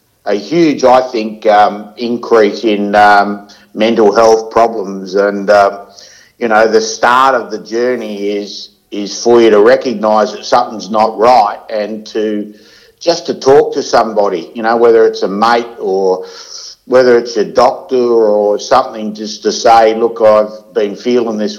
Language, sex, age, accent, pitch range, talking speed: English, male, 60-79, Australian, 105-120 Hz, 160 wpm